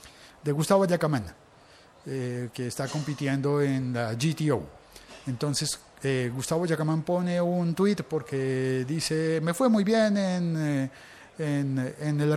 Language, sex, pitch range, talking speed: Spanish, male, 130-175 Hz, 120 wpm